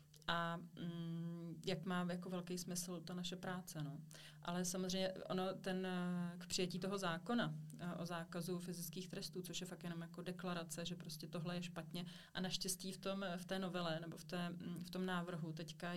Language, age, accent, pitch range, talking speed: Czech, 30-49, native, 165-180 Hz, 185 wpm